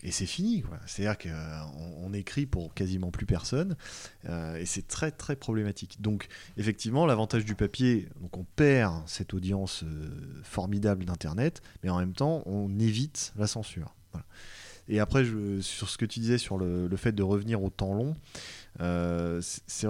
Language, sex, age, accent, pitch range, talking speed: French, male, 30-49, French, 95-120 Hz, 150 wpm